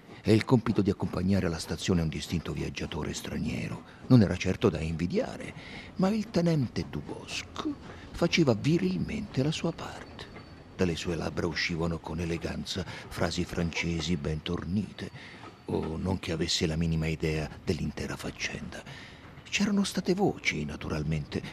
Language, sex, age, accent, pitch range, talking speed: Italian, male, 50-69, native, 85-135 Hz, 135 wpm